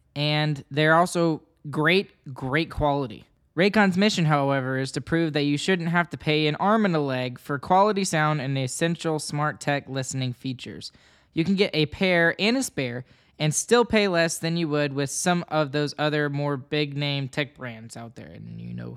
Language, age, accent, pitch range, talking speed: English, 10-29, American, 140-180 Hz, 195 wpm